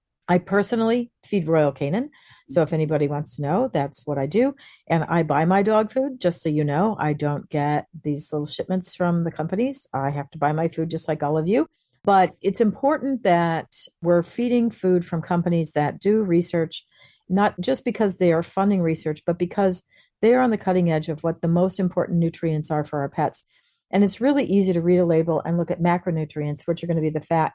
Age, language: 50-69, English